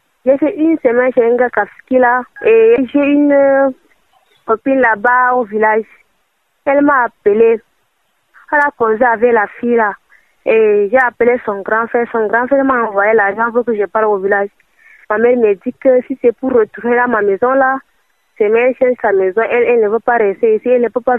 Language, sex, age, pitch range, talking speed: French, female, 20-39, 215-255 Hz, 205 wpm